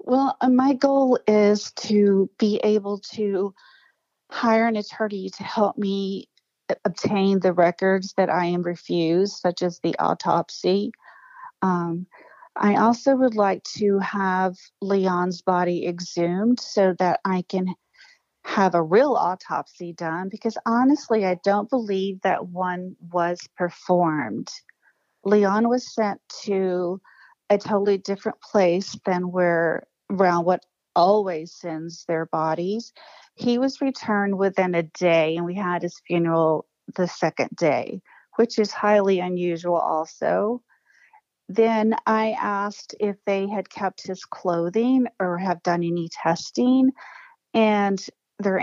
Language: English